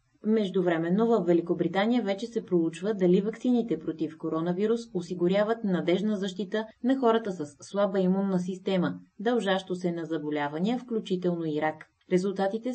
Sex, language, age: female, Bulgarian, 30-49